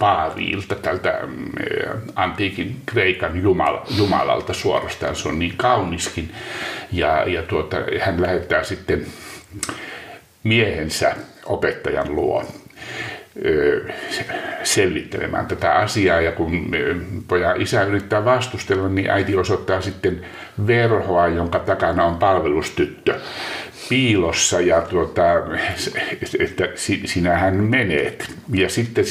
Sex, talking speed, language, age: male, 95 wpm, Finnish, 60-79